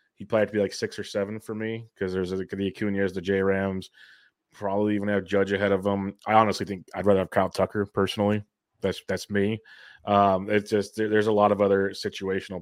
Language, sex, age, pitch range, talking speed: English, male, 20-39, 95-110 Hz, 230 wpm